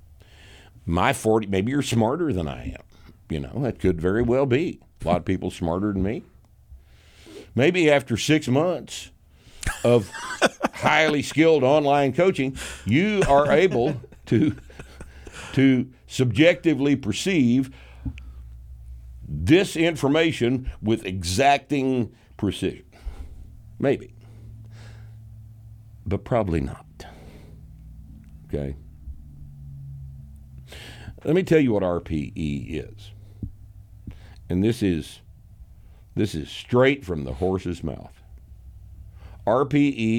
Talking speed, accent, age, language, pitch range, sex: 100 wpm, American, 60-79, English, 80-110 Hz, male